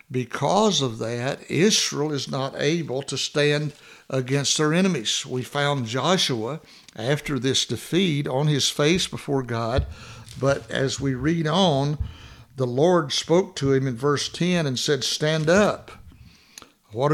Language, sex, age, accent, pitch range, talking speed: English, male, 60-79, American, 130-165 Hz, 145 wpm